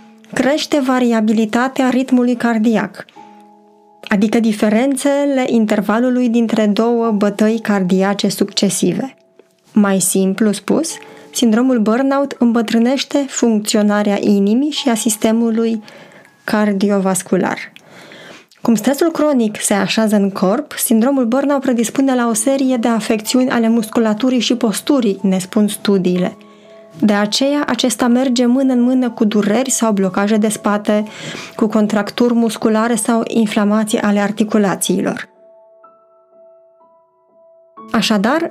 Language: Romanian